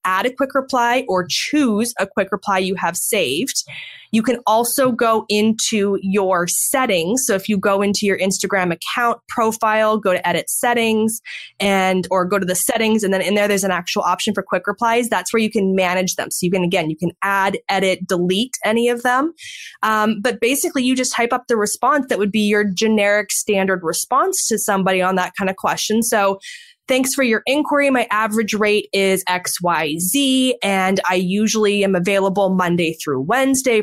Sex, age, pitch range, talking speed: female, 20-39, 190-235 Hz, 195 wpm